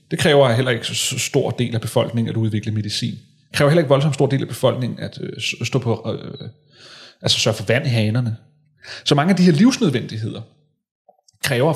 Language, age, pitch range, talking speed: Danish, 30-49, 120-150 Hz, 200 wpm